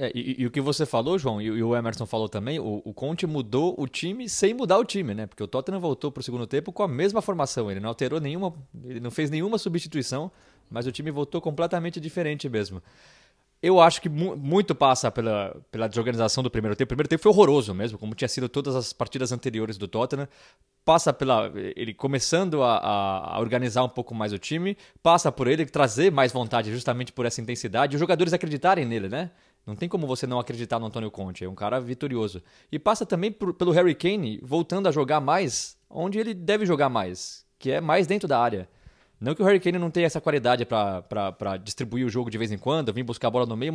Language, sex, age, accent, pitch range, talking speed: Portuguese, male, 20-39, Brazilian, 115-170 Hz, 225 wpm